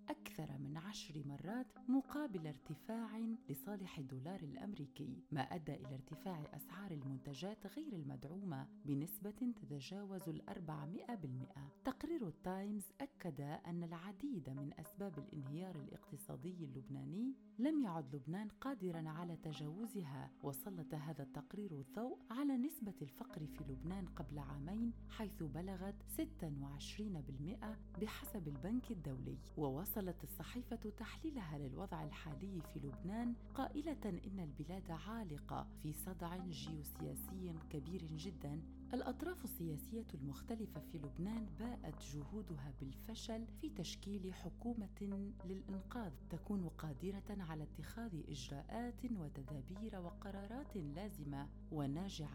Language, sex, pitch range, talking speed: Arabic, female, 145-215 Hz, 105 wpm